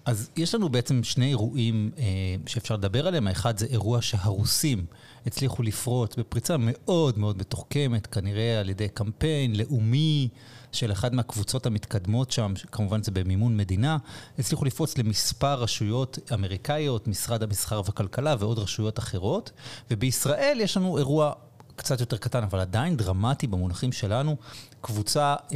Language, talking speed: Hebrew, 135 wpm